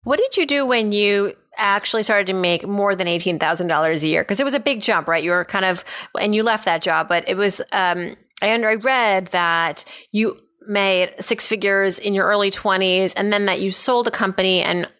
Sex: female